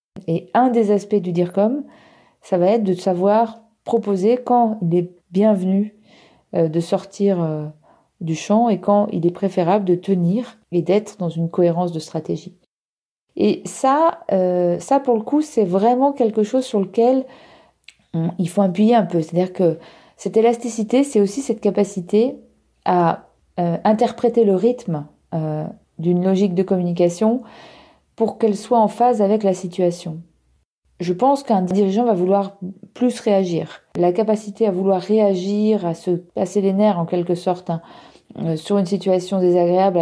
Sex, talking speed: female, 150 wpm